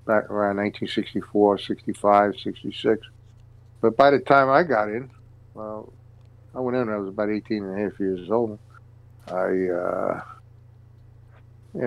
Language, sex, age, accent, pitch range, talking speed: English, male, 50-69, American, 110-125 Hz, 140 wpm